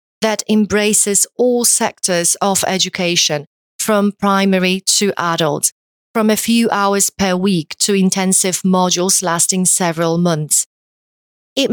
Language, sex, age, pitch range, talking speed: Polish, female, 30-49, 180-215 Hz, 120 wpm